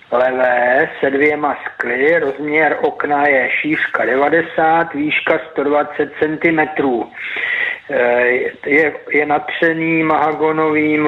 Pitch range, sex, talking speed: 135-155 Hz, male, 85 wpm